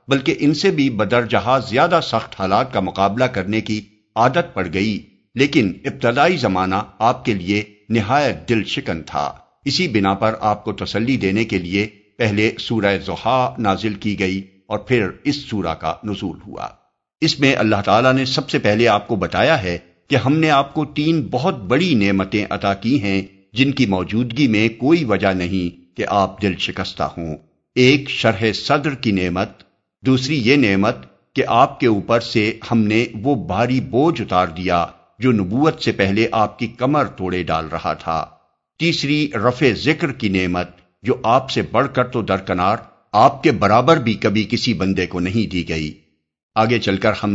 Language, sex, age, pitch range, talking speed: Urdu, male, 50-69, 95-125 Hz, 180 wpm